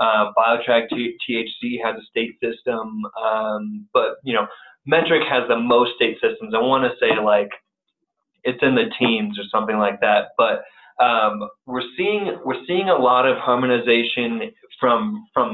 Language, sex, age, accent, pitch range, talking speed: English, male, 20-39, American, 110-165 Hz, 160 wpm